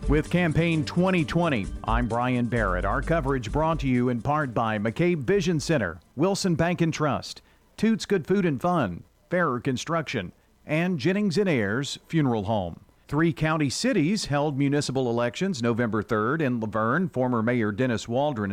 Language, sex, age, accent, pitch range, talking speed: English, male, 40-59, American, 115-165 Hz, 160 wpm